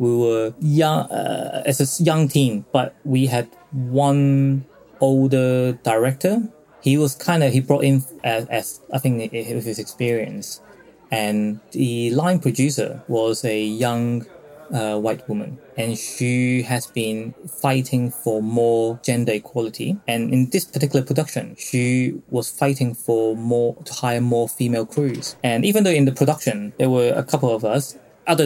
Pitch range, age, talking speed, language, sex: 115-140 Hz, 20-39, 160 wpm, English, male